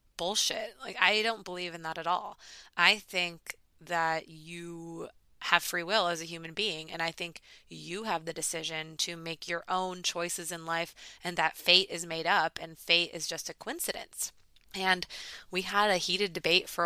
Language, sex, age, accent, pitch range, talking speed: English, female, 20-39, American, 170-200 Hz, 190 wpm